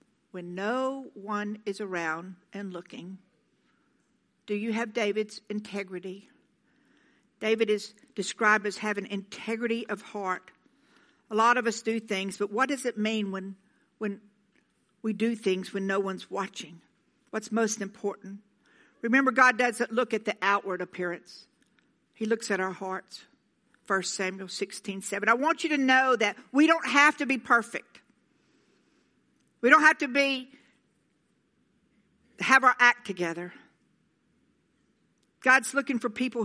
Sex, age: female, 60-79